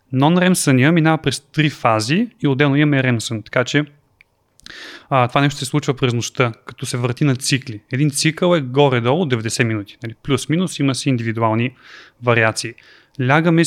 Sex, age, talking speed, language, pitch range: male, 30-49, 160 wpm, Bulgarian, 120-145 Hz